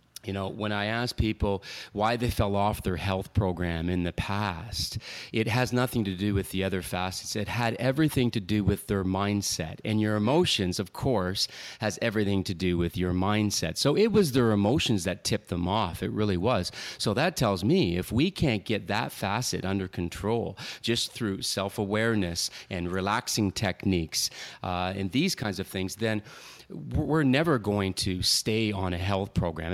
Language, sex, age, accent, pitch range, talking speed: English, male, 30-49, American, 95-115 Hz, 185 wpm